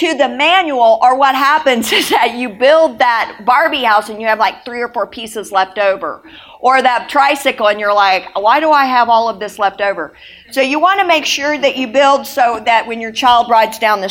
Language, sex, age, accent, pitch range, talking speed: English, female, 50-69, American, 210-275 Hz, 235 wpm